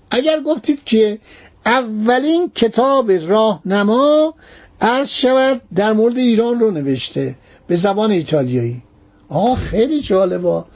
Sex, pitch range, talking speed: male, 185-255 Hz, 105 wpm